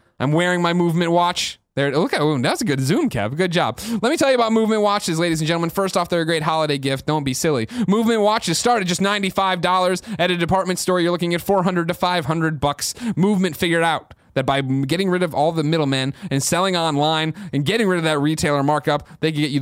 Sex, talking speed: male, 240 wpm